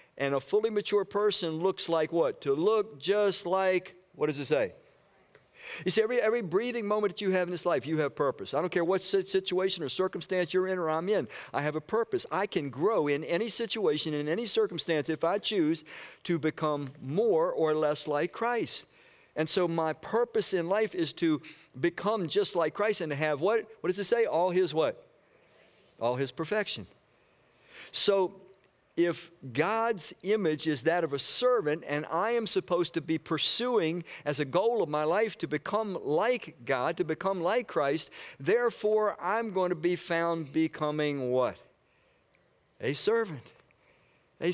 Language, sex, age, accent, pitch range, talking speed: English, male, 50-69, American, 155-210 Hz, 180 wpm